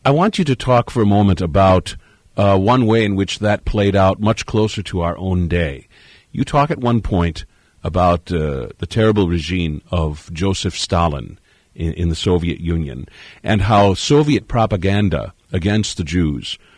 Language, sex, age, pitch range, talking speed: English, male, 50-69, 85-105 Hz, 170 wpm